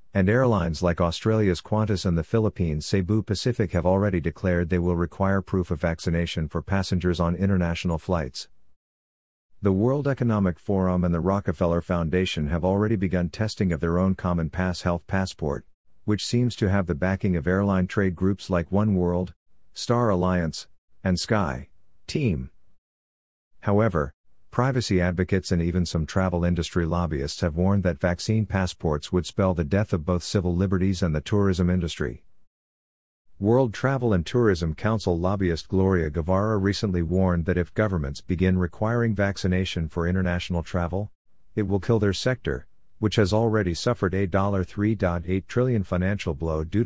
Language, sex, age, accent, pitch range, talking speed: English, male, 50-69, American, 85-100 Hz, 155 wpm